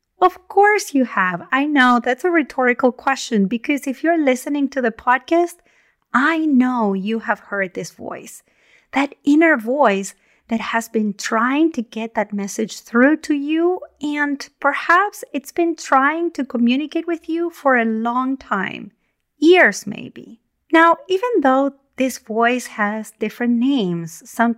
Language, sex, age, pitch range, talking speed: English, female, 30-49, 210-285 Hz, 150 wpm